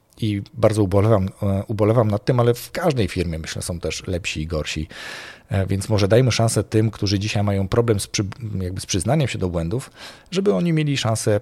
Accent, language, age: native, Polish, 40-59